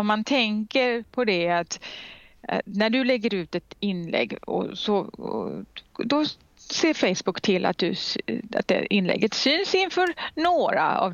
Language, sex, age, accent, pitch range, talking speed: Swedish, female, 30-49, native, 190-260 Hz, 150 wpm